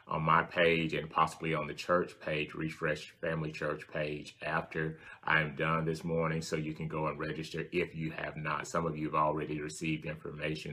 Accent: American